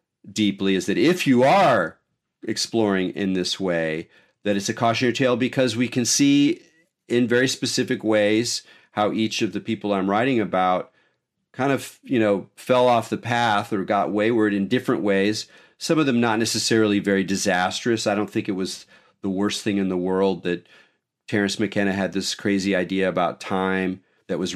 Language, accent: English, American